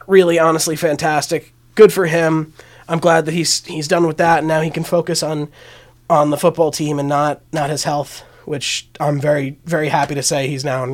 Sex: male